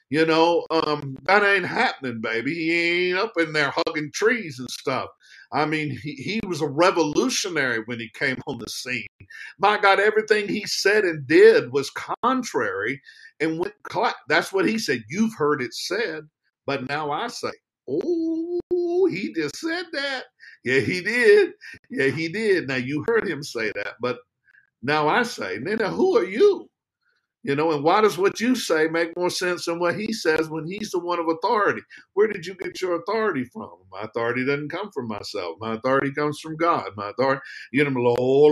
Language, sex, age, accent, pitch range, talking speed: English, male, 50-69, American, 135-225 Hz, 185 wpm